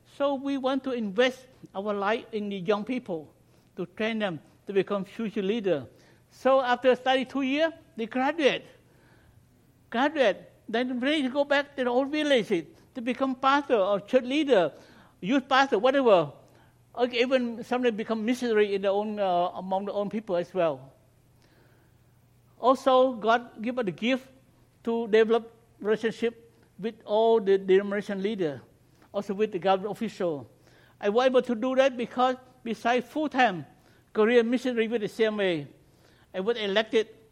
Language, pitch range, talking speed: English, 190-250 Hz, 155 wpm